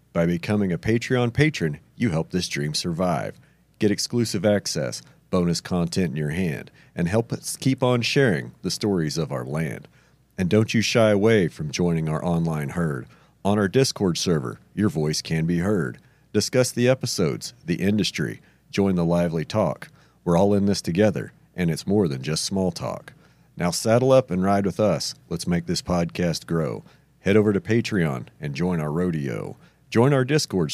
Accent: American